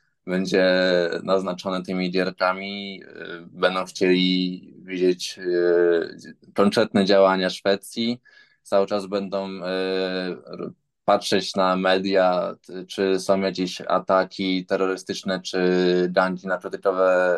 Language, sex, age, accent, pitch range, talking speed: Polish, male, 20-39, native, 95-105 Hz, 85 wpm